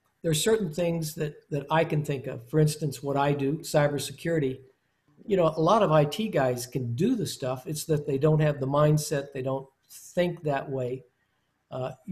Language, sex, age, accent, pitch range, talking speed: English, male, 50-69, American, 135-160 Hz, 200 wpm